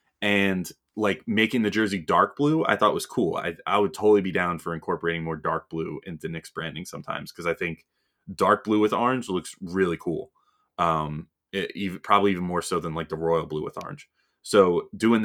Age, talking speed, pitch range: 20-39, 205 wpm, 85-110 Hz